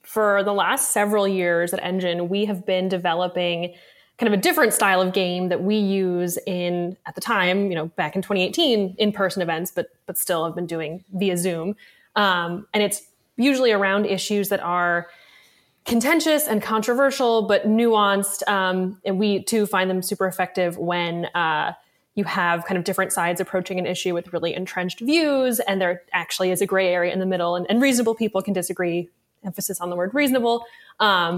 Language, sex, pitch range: English, female, 180-215 Hz